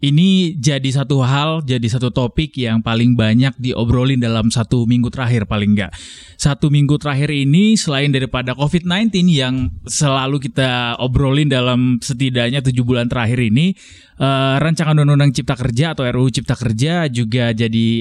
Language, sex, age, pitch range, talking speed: Indonesian, male, 20-39, 120-145 Hz, 150 wpm